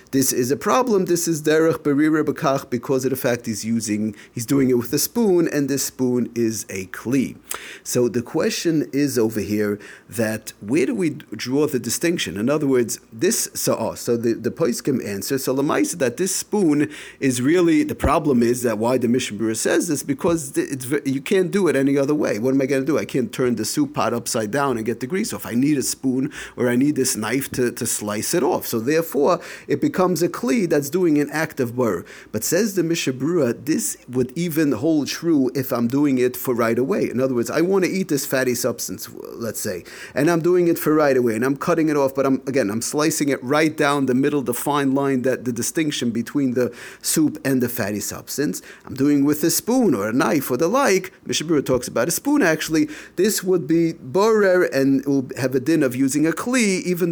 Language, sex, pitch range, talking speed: English, male, 125-165 Hz, 230 wpm